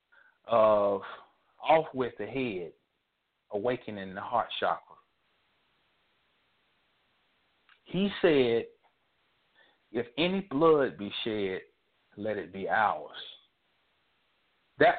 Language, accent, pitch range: English, American, 110-155 Hz